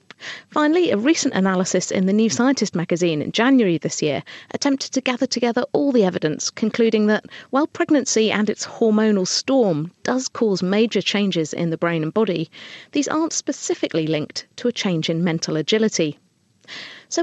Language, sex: English, female